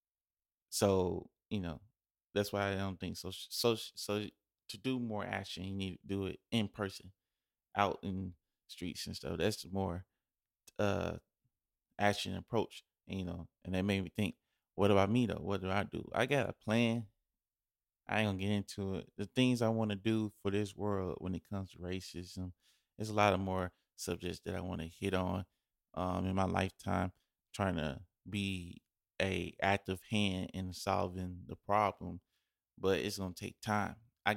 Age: 20-39